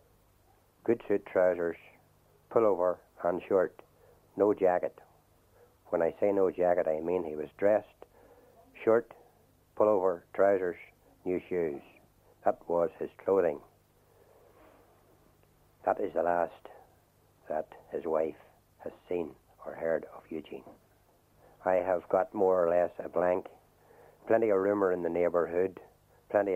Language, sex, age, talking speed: English, male, 60-79, 125 wpm